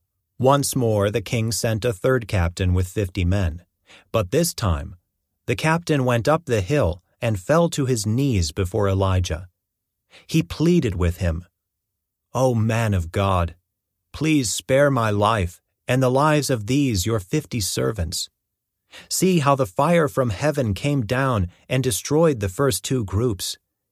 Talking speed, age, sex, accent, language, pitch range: 155 wpm, 40-59, male, American, English, 95-135 Hz